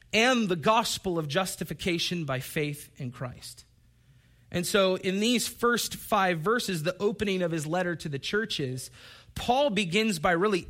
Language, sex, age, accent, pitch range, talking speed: English, male, 30-49, American, 140-205 Hz, 155 wpm